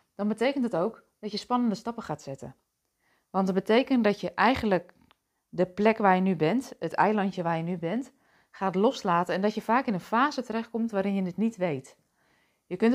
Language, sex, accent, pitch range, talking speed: Dutch, female, Dutch, 175-220 Hz, 210 wpm